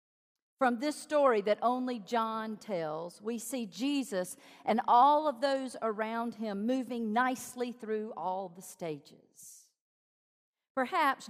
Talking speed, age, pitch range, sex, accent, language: 120 wpm, 50-69, 195-270 Hz, female, American, English